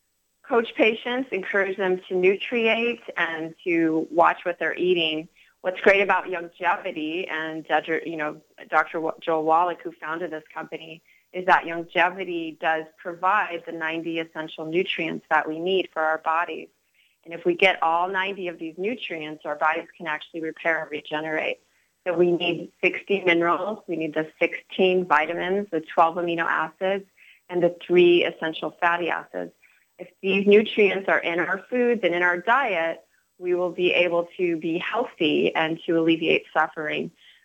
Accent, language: American, English